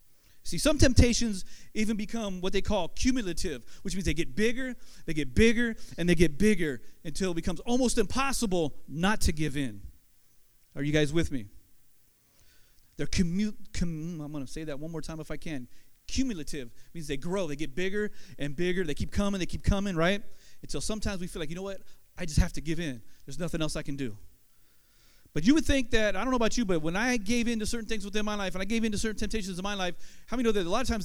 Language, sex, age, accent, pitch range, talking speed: English, male, 30-49, American, 155-225 Hz, 240 wpm